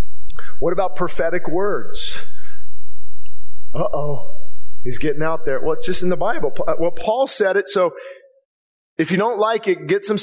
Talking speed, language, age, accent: 165 wpm, English, 40-59, American